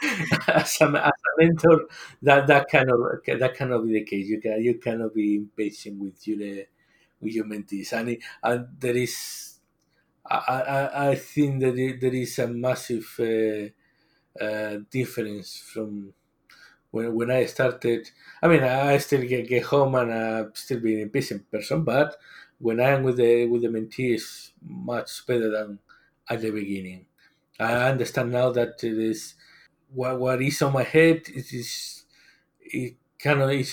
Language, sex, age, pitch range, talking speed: English, male, 50-69, 110-135 Hz, 160 wpm